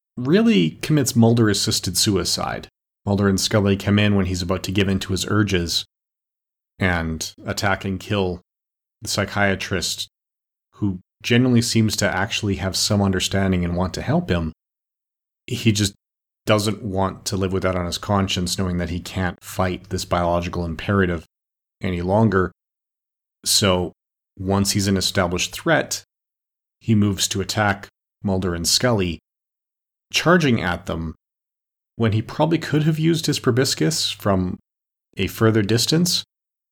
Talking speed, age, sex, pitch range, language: 140 wpm, 40-59, male, 90-115 Hz, English